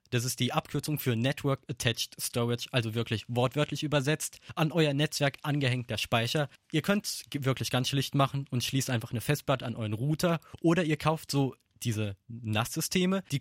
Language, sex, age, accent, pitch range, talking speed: German, male, 20-39, German, 115-155 Hz, 175 wpm